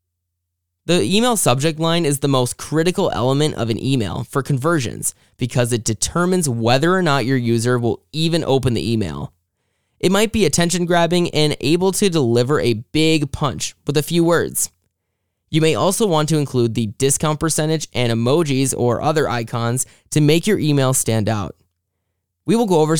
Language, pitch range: English, 115-160 Hz